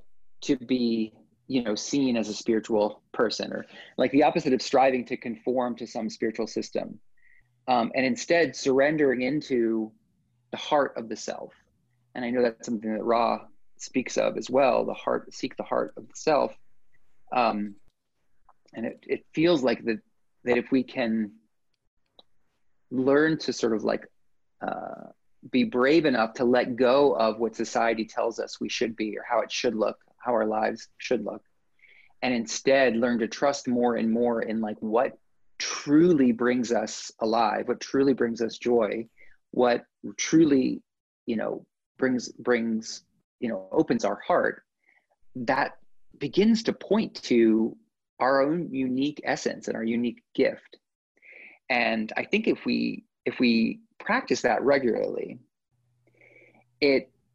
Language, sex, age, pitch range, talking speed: English, male, 30-49, 115-135 Hz, 155 wpm